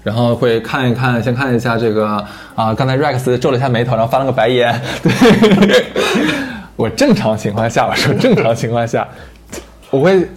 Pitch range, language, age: 110-135 Hz, Chinese, 20-39